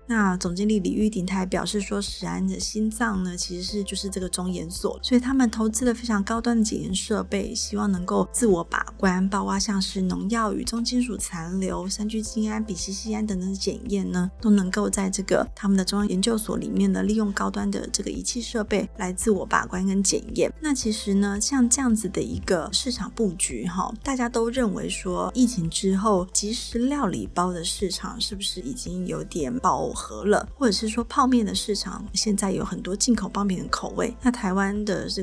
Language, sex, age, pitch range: Chinese, female, 30-49, 190-225 Hz